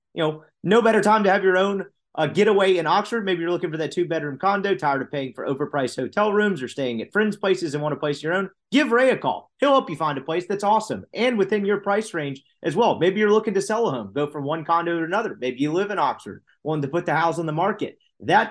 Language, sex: English, male